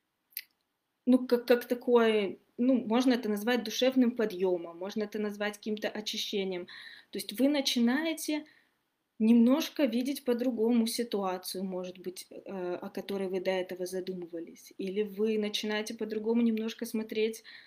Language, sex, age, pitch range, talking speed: Russian, female, 20-39, 195-255 Hz, 125 wpm